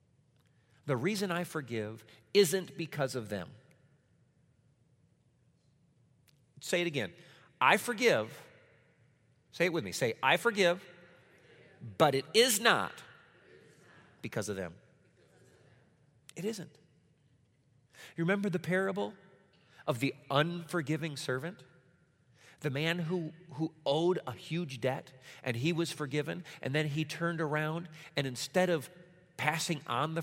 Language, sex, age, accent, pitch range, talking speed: English, male, 40-59, American, 130-170 Hz, 120 wpm